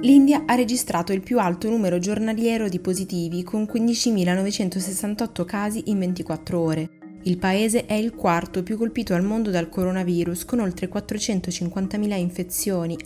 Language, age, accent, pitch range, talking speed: Italian, 20-39, native, 165-200 Hz, 140 wpm